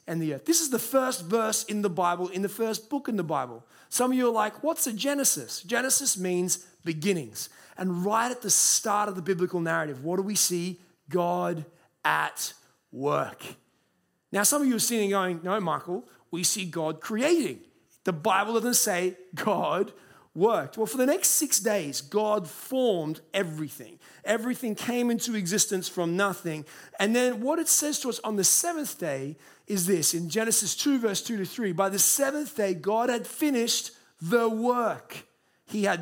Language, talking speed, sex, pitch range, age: English, 185 wpm, male, 175-235 Hz, 30-49